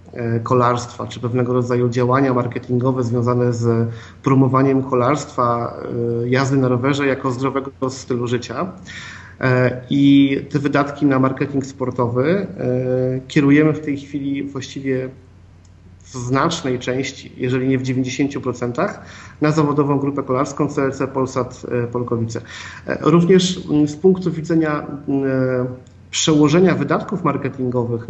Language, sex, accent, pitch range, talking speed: Polish, male, native, 125-145 Hz, 105 wpm